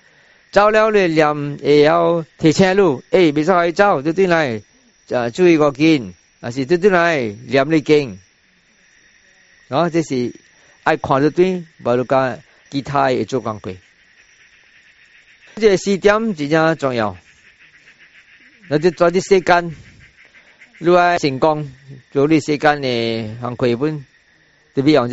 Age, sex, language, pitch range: 50-69, male, English, 130-175 Hz